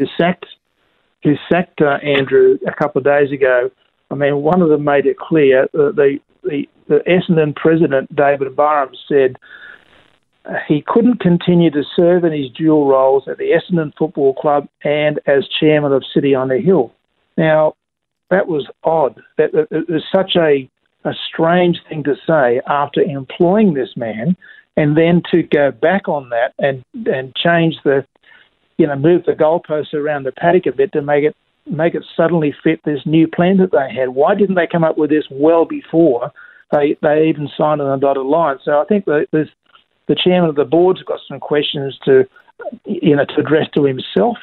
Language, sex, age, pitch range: English, male, 50-69, 140-180 Hz